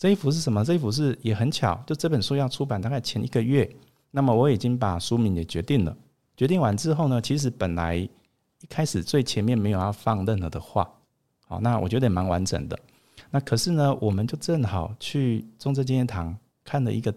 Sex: male